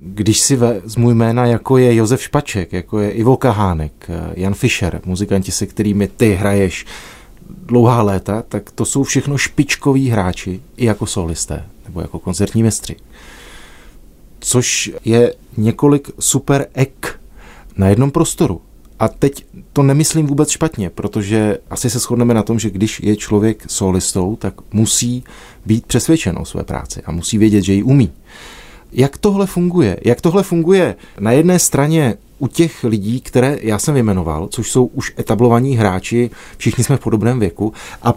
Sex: male